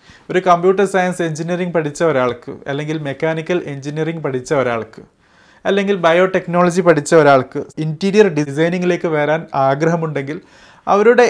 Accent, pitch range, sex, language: native, 145-180 Hz, male, Malayalam